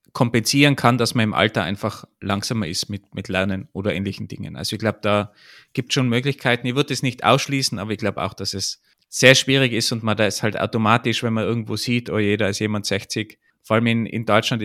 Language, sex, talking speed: German, male, 235 wpm